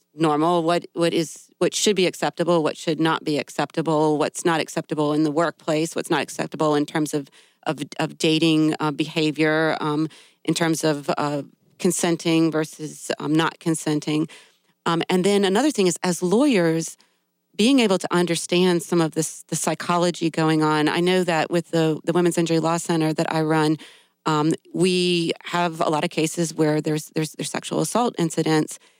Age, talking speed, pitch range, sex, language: 40-59, 180 wpm, 155-180 Hz, female, English